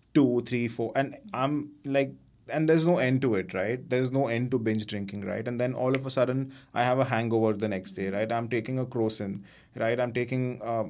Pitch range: 115-130 Hz